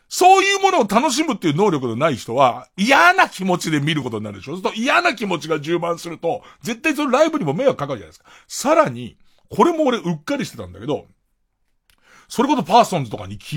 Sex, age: male, 40-59